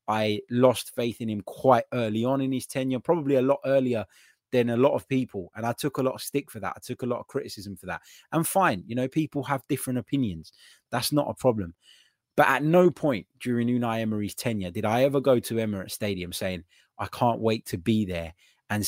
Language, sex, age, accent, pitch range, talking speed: English, male, 20-39, British, 105-130 Hz, 230 wpm